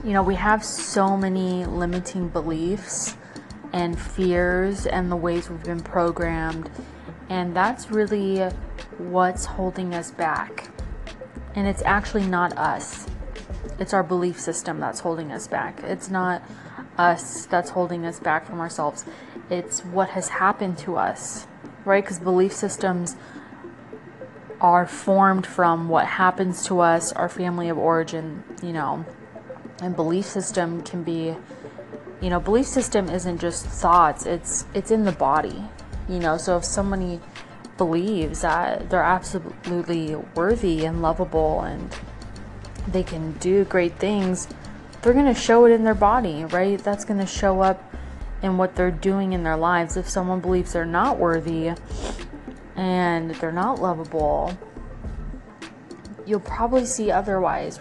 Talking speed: 145 wpm